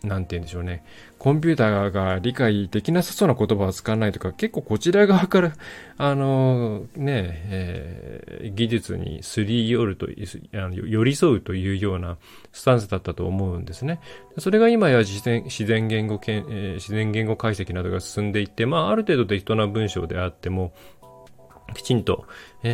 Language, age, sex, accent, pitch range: Japanese, 20-39, male, native, 95-125 Hz